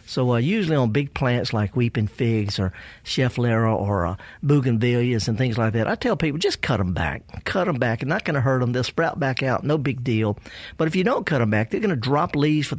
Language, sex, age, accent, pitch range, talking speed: English, male, 50-69, American, 115-155 Hz, 255 wpm